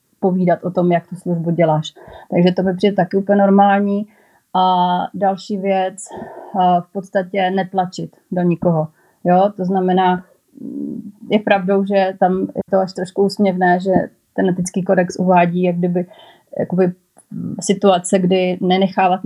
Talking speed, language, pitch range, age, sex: 140 wpm, Slovak, 185-210 Hz, 30-49, female